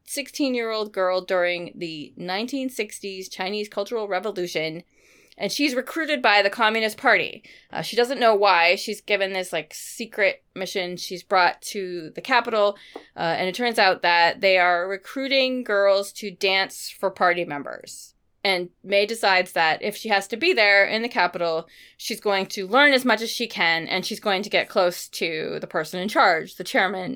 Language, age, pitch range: English, 20-39, 170-210 Hz